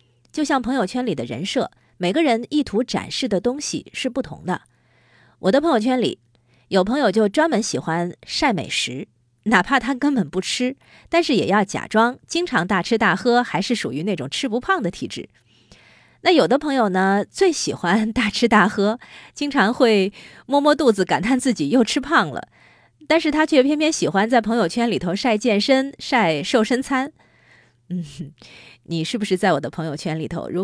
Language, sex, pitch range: Chinese, female, 170-250 Hz